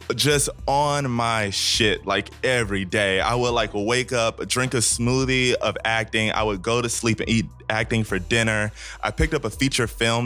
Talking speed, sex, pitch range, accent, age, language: 195 wpm, male, 100-120 Hz, American, 20-39, English